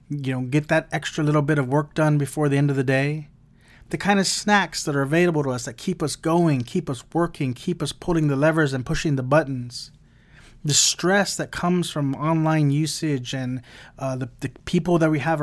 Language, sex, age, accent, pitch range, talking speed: English, male, 30-49, American, 135-160 Hz, 220 wpm